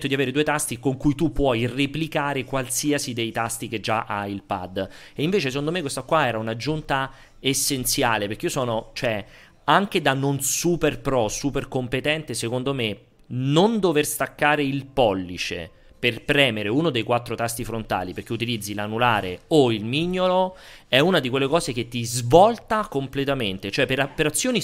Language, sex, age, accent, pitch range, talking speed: Italian, male, 30-49, native, 115-160 Hz, 170 wpm